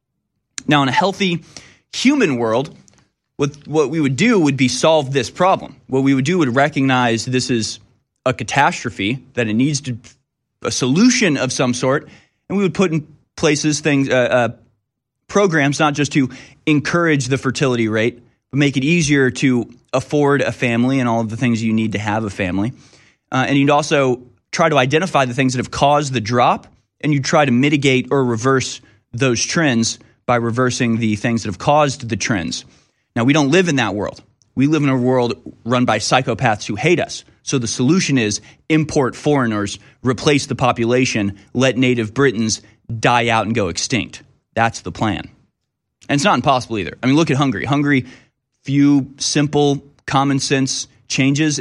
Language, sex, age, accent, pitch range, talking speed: English, male, 20-39, American, 115-145 Hz, 180 wpm